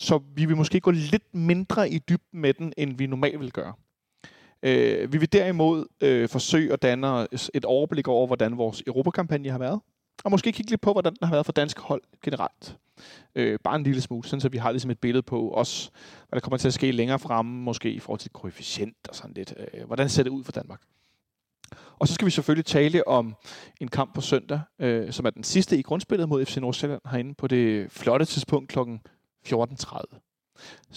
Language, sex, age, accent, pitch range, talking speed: Danish, male, 30-49, native, 125-160 Hz, 200 wpm